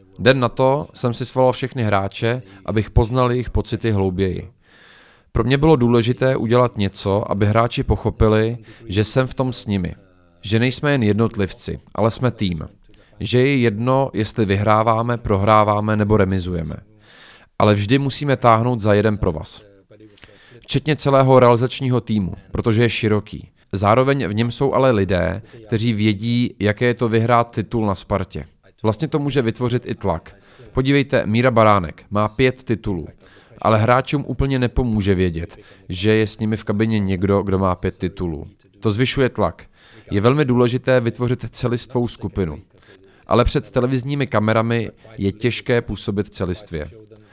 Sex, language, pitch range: male, Czech, 100-125 Hz